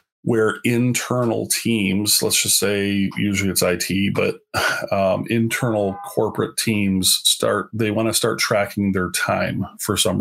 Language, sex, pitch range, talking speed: English, male, 100-115 Hz, 135 wpm